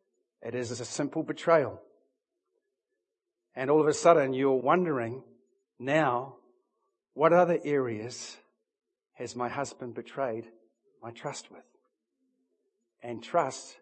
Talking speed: 110 wpm